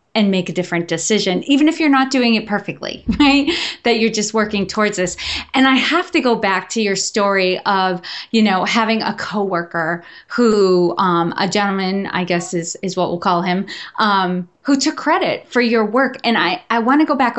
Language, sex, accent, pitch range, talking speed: English, female, American, 190-235 Hz, 205 wpm